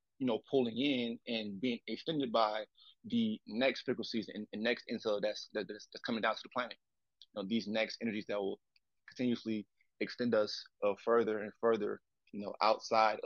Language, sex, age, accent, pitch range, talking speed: English, male, 30-49, American, 110-125 Hz, 185 wpm